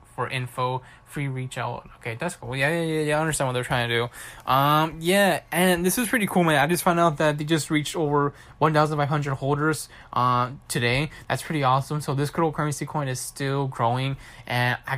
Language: English